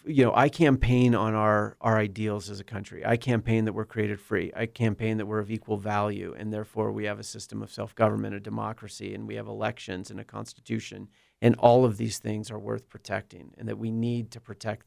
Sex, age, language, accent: male, 40-59, English, American